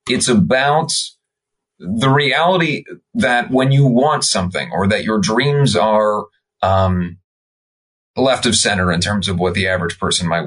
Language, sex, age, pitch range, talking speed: English, male, 30-49, 100-140 Hz, 150 wpm